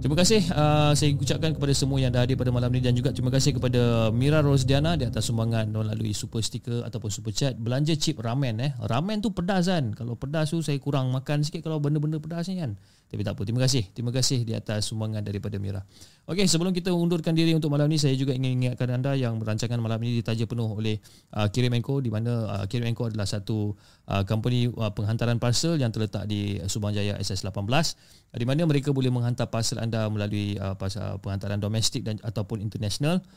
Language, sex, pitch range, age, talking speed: Malay, male, 110-145 Hz, 30-49, 210 wpm